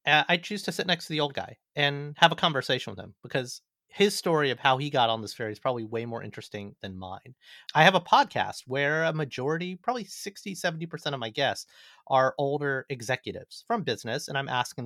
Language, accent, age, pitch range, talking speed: English, American, 30-49, 125-170 Hz, 215 wpm